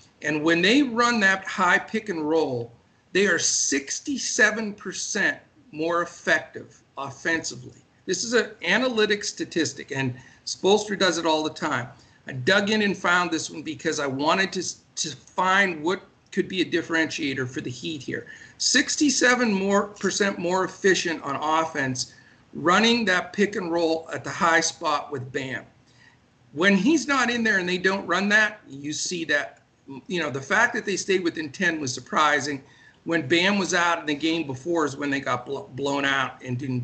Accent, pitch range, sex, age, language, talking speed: American, 140-195 Hz, male, 50-69, English, 175 wpm